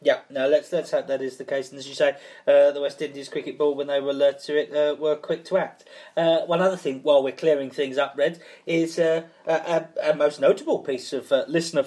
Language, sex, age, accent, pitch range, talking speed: English, male, 40-59, British, 145-195 Hz, 260 wpm